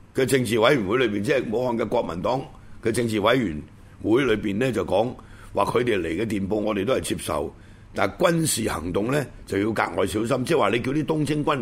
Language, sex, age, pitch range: Chinese, male, 60-79, 100-155 Hz